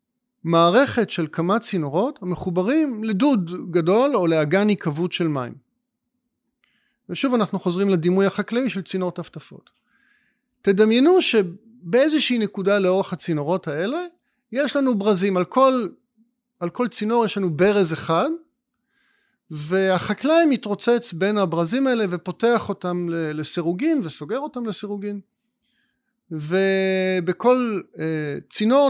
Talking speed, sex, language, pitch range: 105 wpm, male, Hebrew, 175-245 Hz